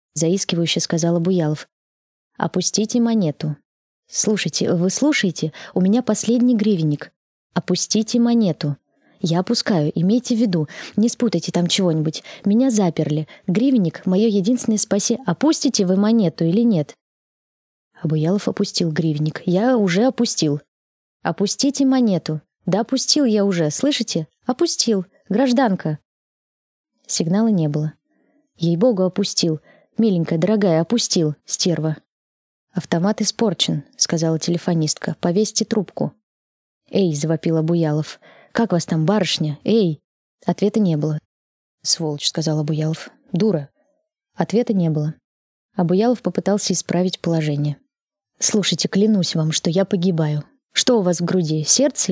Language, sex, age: Russian, female, 20-39